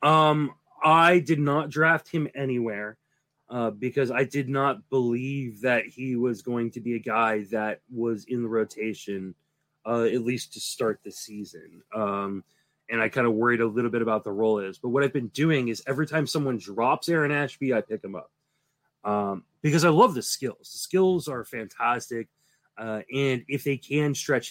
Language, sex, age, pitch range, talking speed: English, male, 20-39, 115-145 Hz, 190 wpm